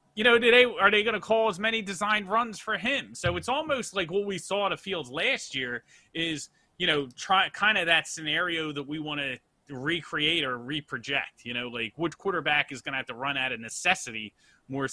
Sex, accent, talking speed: male, American, 230 wpm